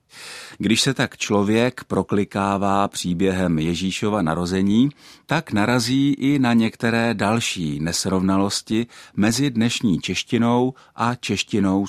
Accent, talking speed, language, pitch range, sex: native, 100 wpm, Czech, 95-130 Hz, male